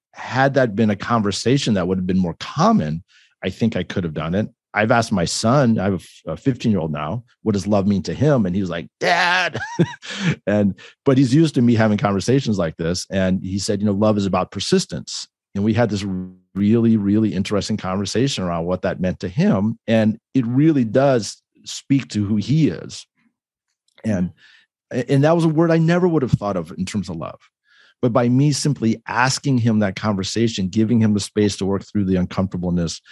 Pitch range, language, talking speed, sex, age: 95-120 Hz, English, 210 wpm, male, 40-59